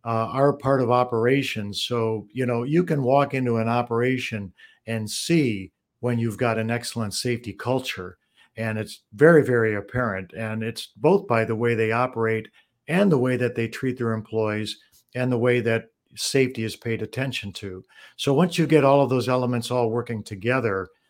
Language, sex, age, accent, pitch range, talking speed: English, male, 50-69, American, 105-125 Hz, 180 wpm